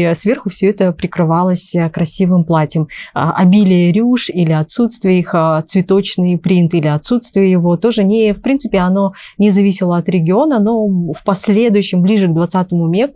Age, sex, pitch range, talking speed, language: 20-39, female, 170-205 Hz, 140 wpm, Russian